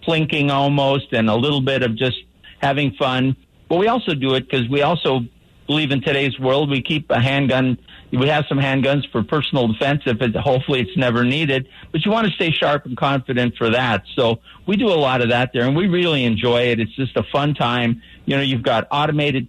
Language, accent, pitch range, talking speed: English, American, 115-145 Hz, 220 wpm